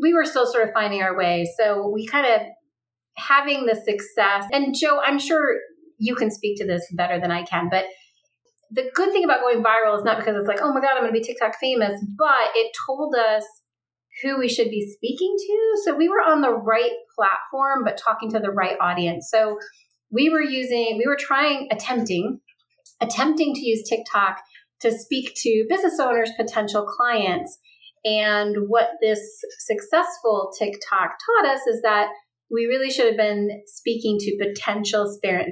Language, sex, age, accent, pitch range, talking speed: English, female, 30-49, American, 205-285 Hz, 185 wpm